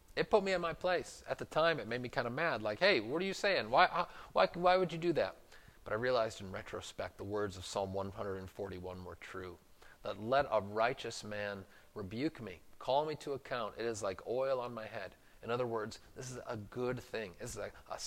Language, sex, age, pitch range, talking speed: English, male, 30-49, 105-140 Hz, 235 wpm